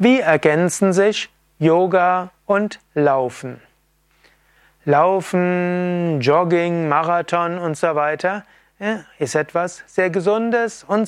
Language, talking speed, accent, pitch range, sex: German, 90 wpm, German, 155-195 Hz, male